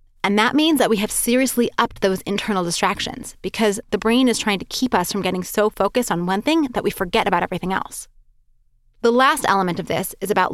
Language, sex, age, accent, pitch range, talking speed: English, female, 20-39, American, 190-250 Hz, 220 wpm